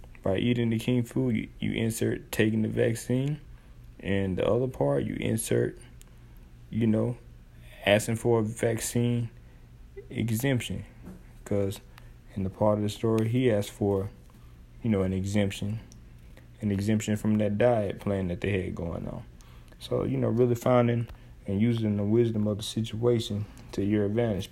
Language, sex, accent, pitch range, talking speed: English, male, American, 100-120 Hz, 155 wpm